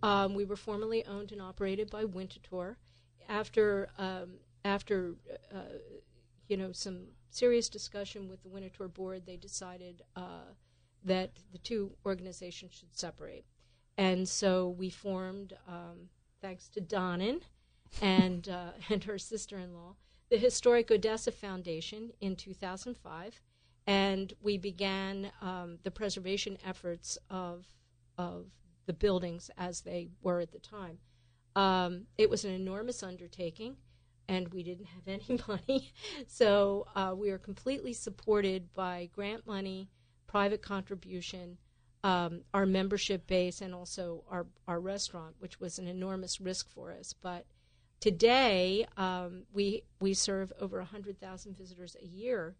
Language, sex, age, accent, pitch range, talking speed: English, female, 50-69, American, 180-205 Hz, 135 wpm